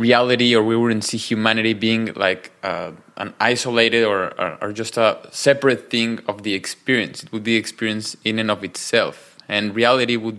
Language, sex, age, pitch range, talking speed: English, male, 20-39, 110-125 Hz, 185 wpm